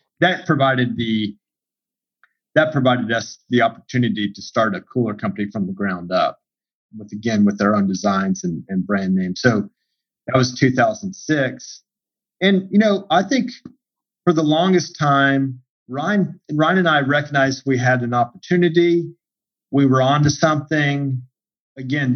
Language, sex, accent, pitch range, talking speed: English, male, American, 105-140 Hz, 145 wpm